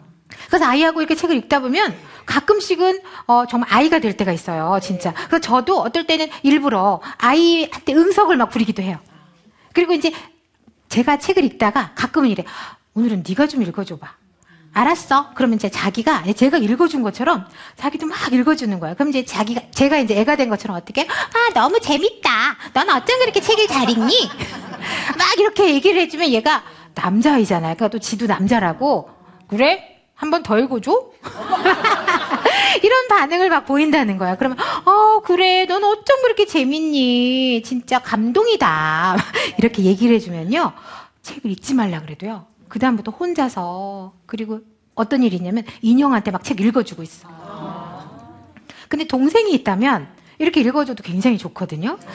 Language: Korean